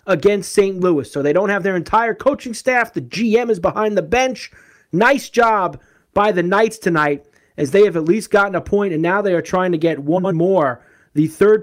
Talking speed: 215 wpm